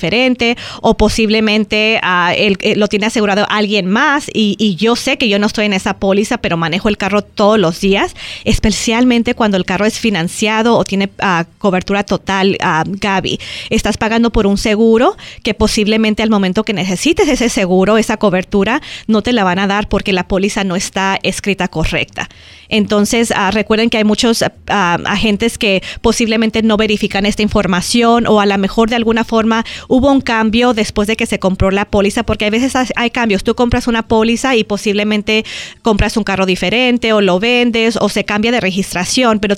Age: 30-49